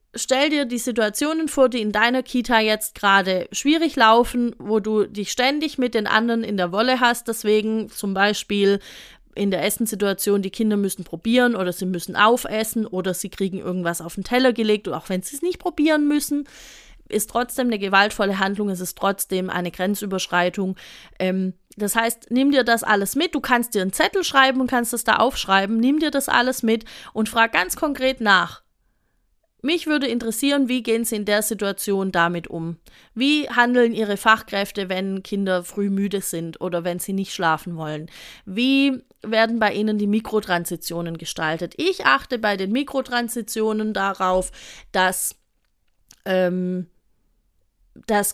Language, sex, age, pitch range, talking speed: German, female, 30-49, 190-240 Hz, 165 wpm